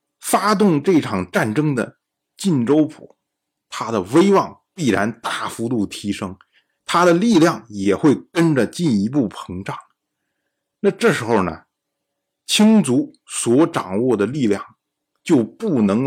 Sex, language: male, Chinese